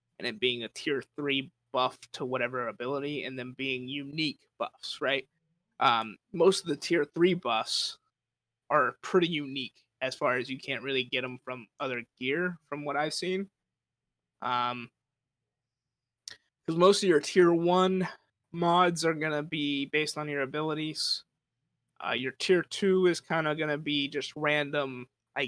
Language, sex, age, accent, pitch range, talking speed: English, male, 20-39, American, 130-160 Hz, 165 wpm